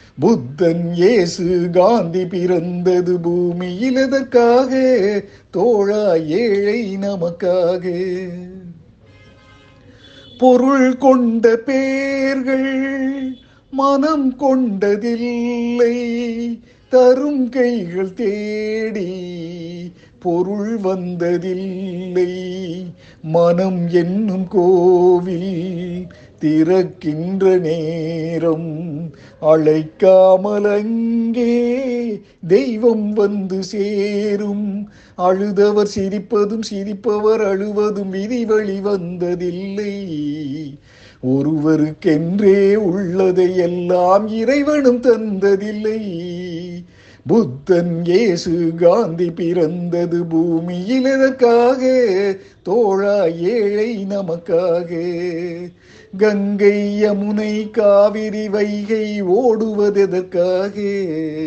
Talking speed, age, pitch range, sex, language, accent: 50 wpm, 50-69, 175-215 Hz, male, Tamil, native